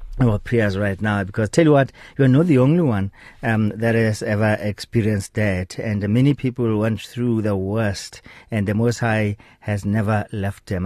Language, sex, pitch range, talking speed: English, male, 105-130 Hz, 195 wpm